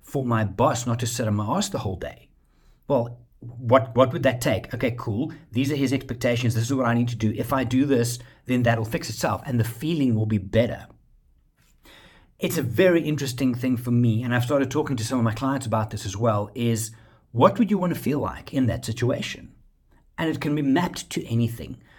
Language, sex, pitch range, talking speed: English, male, 110-135 Hz, 225 wpm